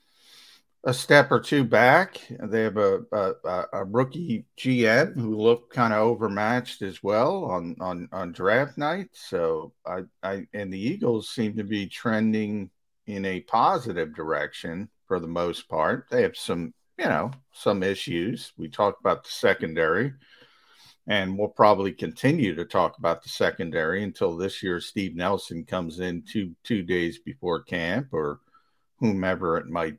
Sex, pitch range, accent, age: male, 90-120 Hz, American, 50-69